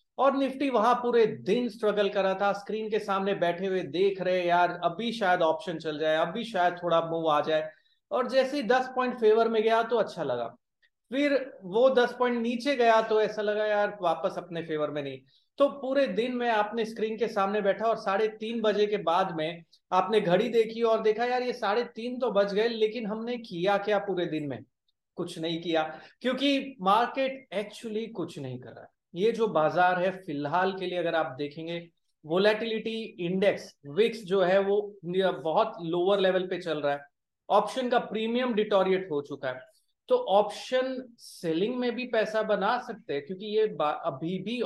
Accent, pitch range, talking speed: Indian, 170-225 Hz, 140 wpm